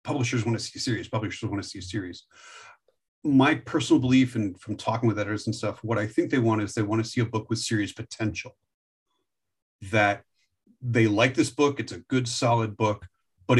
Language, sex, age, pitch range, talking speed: English, male, 40-59, 100-120 Hz, 210 wpm